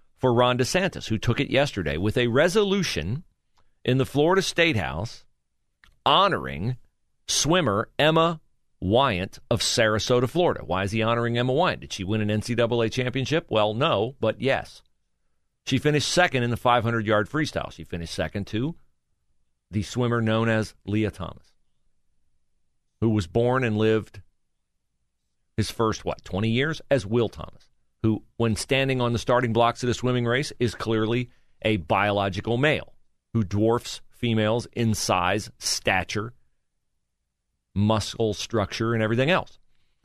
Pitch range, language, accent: 85-120 Hz, English, American